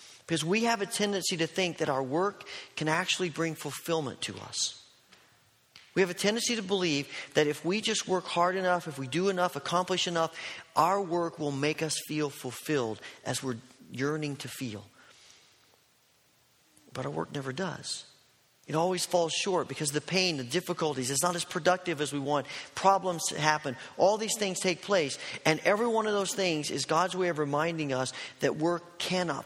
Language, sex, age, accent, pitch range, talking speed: English, male, 40-59, American, 135-180 Hz, 185 wpm